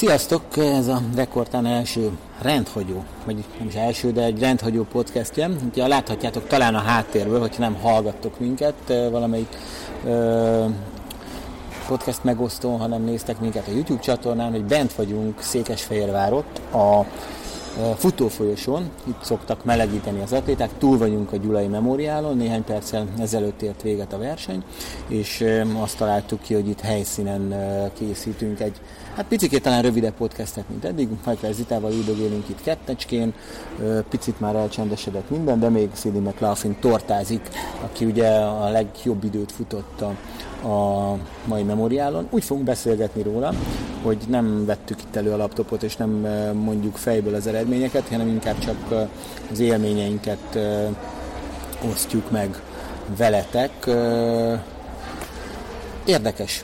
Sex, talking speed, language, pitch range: male, 130 wpm, Hungarian, 105-120 Hz